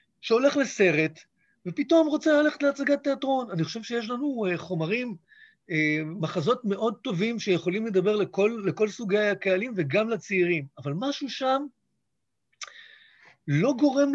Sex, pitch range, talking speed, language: male, 155-220 Hz, 120 wpm, Hebrew